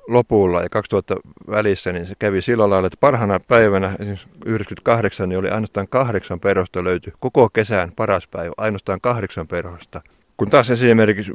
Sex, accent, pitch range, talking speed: male, native, 95-110 Hz, 155 wpm